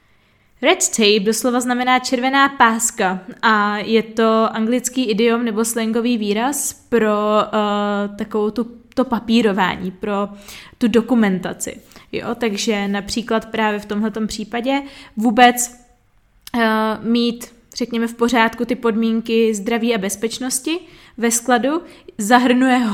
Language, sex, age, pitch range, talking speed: Czech, female, 20-39, 205-245 Hz, 105 wpm